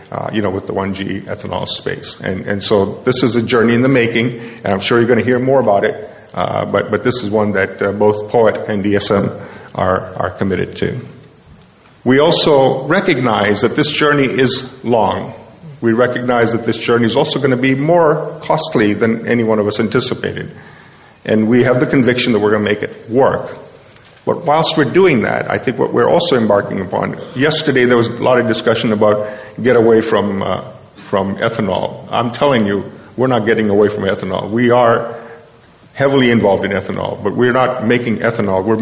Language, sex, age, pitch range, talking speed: English, male, 50-69, 105-125 Hz, 200 wpm